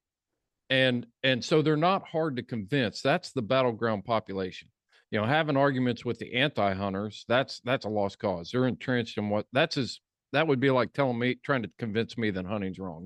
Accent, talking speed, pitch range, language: American, 200 wpm, 105-135 Hz, English